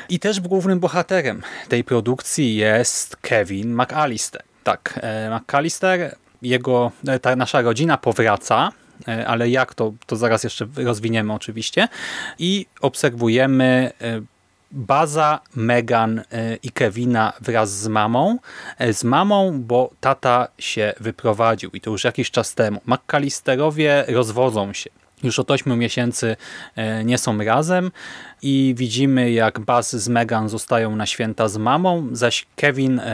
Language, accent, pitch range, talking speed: Polish, native, 110-135 Hz, 120 wpm